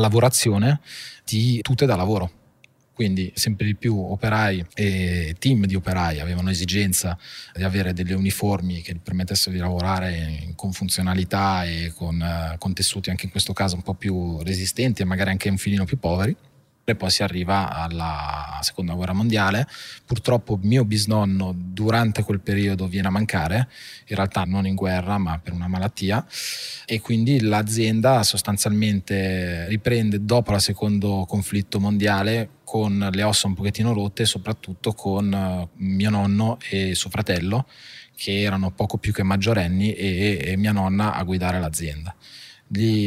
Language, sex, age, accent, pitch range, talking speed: Italian, male, 20-39, native, 95-105 Hz, 150 wpm